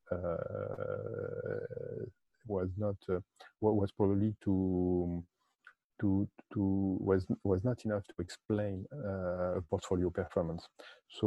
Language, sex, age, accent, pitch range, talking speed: English, male, 50-69, French, 95-105 Hz, 105 wpm